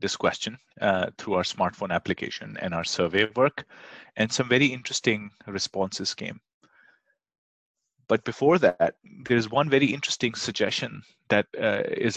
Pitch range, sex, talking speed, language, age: 110-135 Hz, male, 140 wpm, English, 30-49